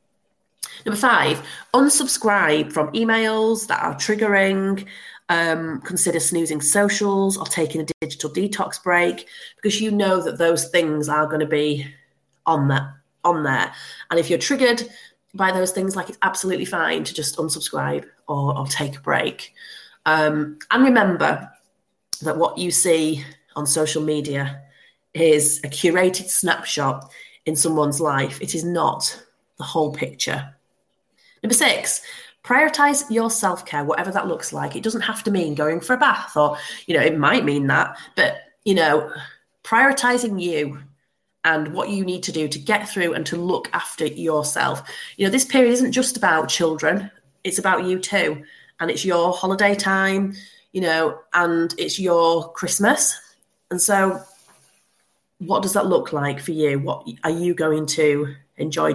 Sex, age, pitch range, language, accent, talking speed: female, 30-49, 150-195 Hz, English, British, 160 wpm